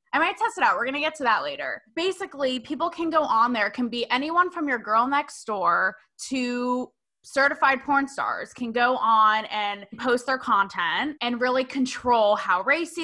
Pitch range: 235-325 Hz